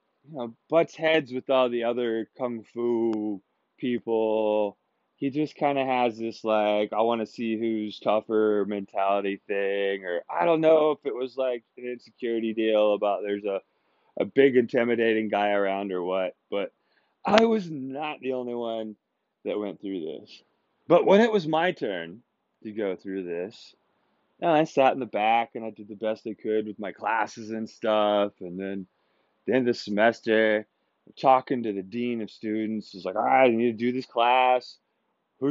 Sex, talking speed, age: male, 180 wpm, 20-39